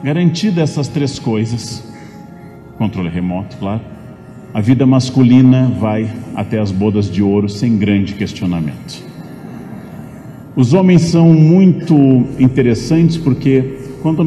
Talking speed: 110 wpm